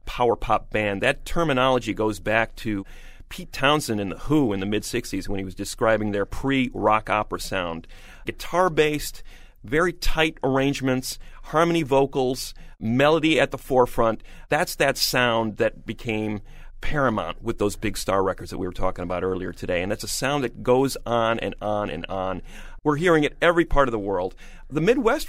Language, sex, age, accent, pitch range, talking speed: English, male, 40-59, American, 100-135 Hz, 170 wpm